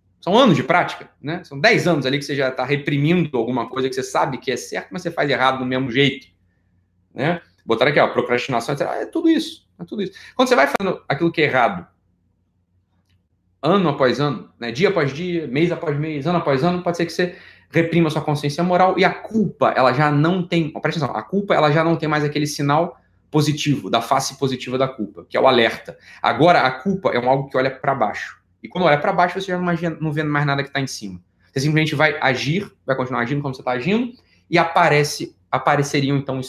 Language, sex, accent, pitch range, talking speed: Portuguese, male, Brazilian, 130-170 Hz, 225 wpm